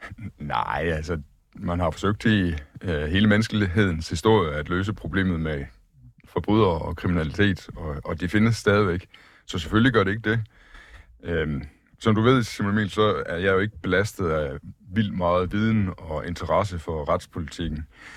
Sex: male